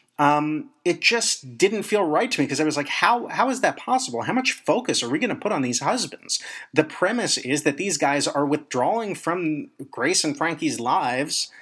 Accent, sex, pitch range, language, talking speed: American, male, 125-170 Hz, English, 210 wpm